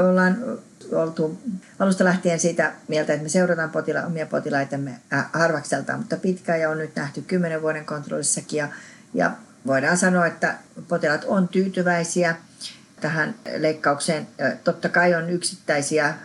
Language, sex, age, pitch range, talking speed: Finnish, female, 40-59, 155-180 Hz, 135 wpm